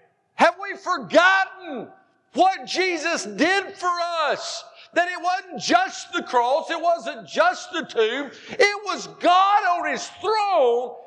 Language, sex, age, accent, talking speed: English, male, 50-69, American, 135 wpm